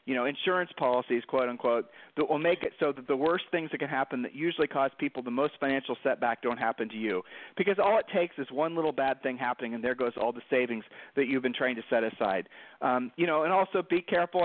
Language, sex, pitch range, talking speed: English, male, 130-155 Hz, 250 wpm